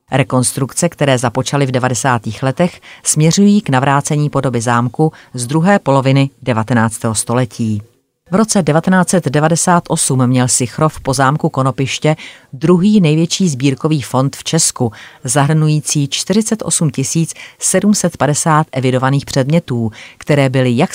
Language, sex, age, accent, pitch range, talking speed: Czech, female, 40-59, native, 125-155 Hz, 110 wpm